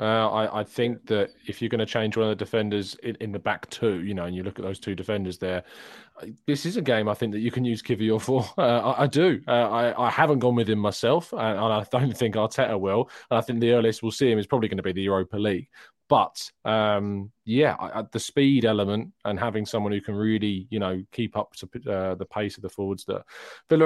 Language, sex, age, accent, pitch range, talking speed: English, male, 20-39, British, 105-125 Hz, 250 wpm